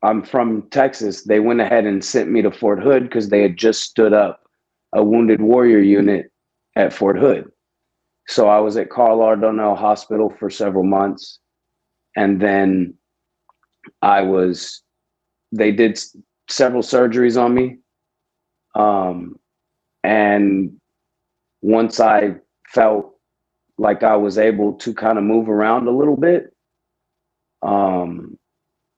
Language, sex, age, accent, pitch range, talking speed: English, male, 30-49, American, 100-120 Hz, 135 wpm